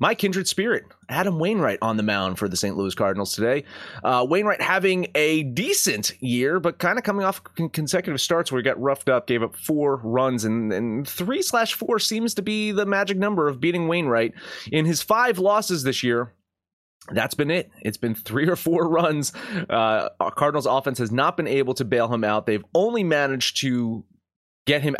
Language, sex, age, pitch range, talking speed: English, male, 30-49, 105-165 Hz, 195 wpm